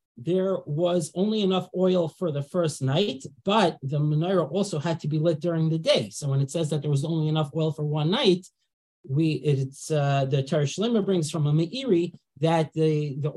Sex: male